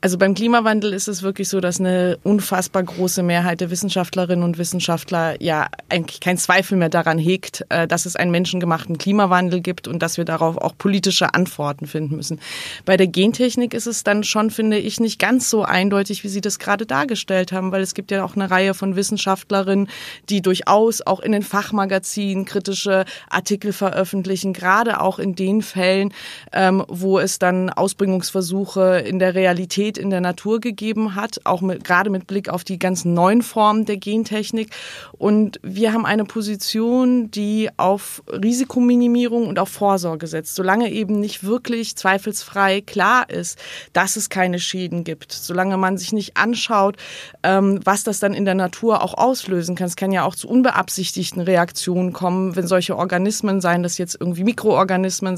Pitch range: 180-210 Hz